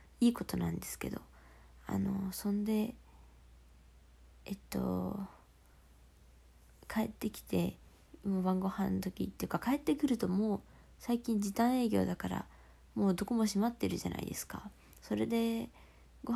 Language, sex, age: Japanese, female, 20-39